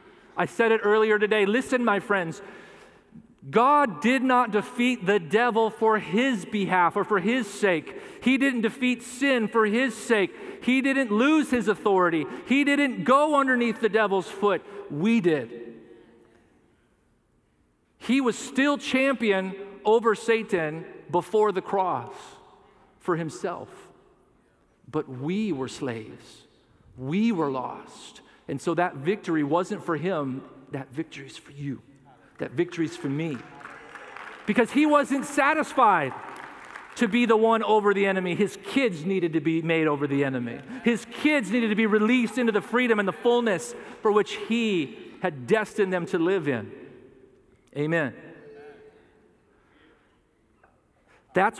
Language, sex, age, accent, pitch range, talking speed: English, male, 40-59, American, 170-240 Hz, 140 wpm